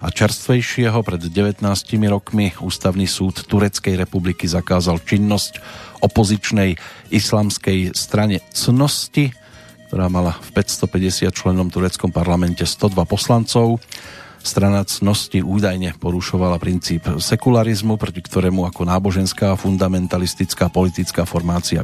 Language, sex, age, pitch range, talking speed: Slovak, male, 40-59, 90-105 Hz, 100 wpm